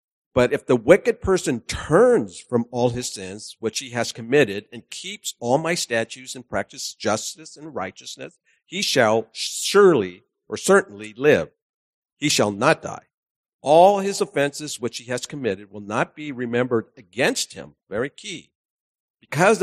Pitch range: 115-180 Hz